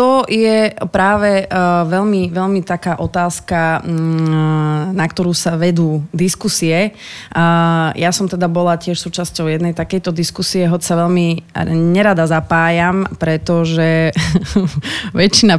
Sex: female